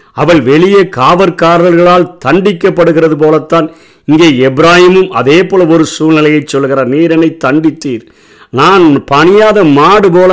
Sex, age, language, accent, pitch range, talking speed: male, 50-69, Tamil, native, 135-170 Hz, 100 wpm